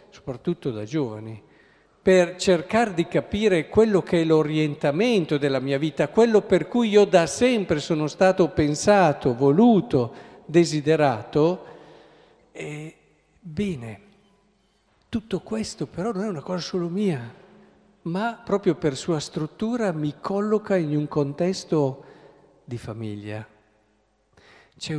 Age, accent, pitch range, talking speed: 50-69, native, 135-180 Hz, 115 wpm